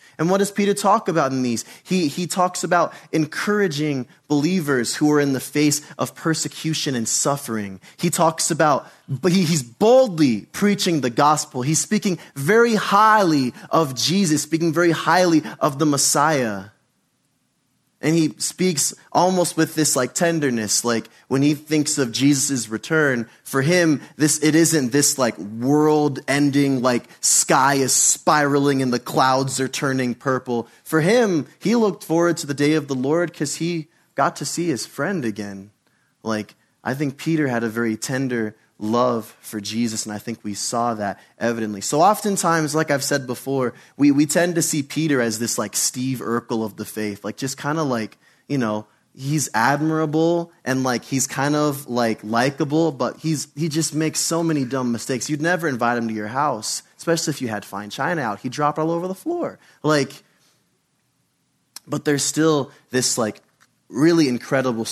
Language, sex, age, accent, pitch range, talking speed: English, male, 20-39, American, 120-160 Hz, 175 wpm